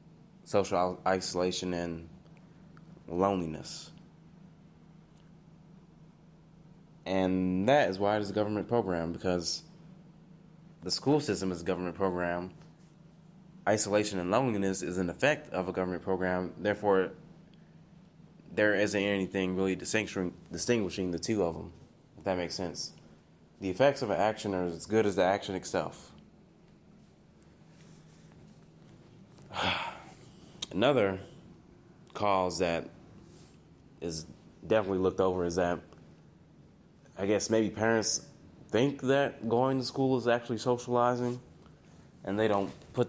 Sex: male